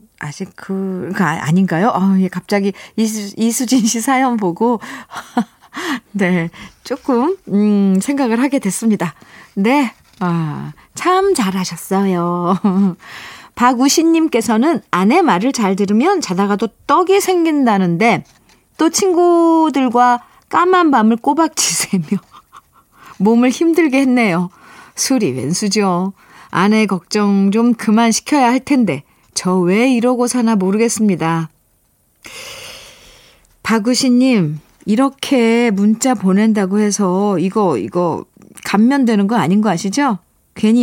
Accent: native